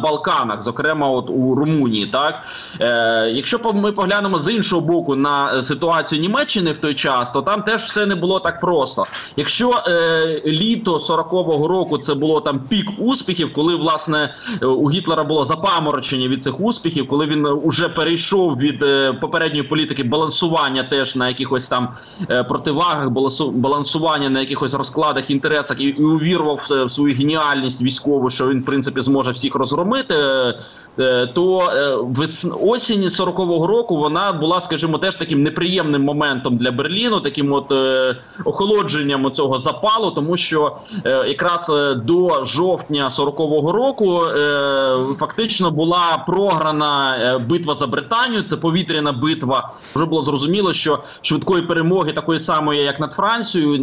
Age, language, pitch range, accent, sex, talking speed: 20-39, Ukrainian, 140-175 Hz, native, male, 140 wpm